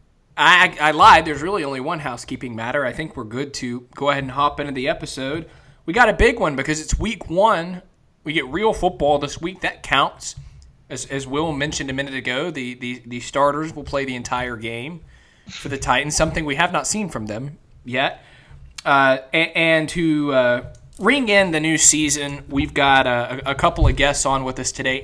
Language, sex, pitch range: English, male, 130-150 Hz